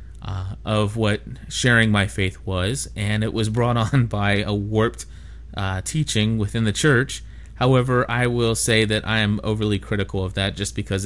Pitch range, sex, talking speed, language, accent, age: 95-125 Hz, male, 180 wpm, English, American, 30-49